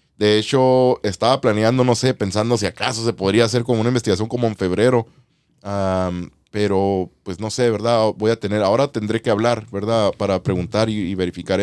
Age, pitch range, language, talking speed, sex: 30-49, 95-120 Hz, Spanish, 190 wpm, male